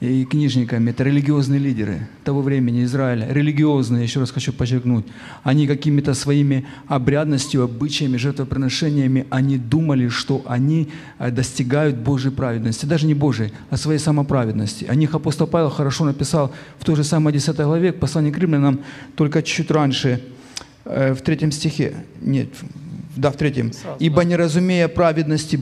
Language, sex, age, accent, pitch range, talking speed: Ukrainian, male, 40-59, native, 135-165 Hz, 145 wpm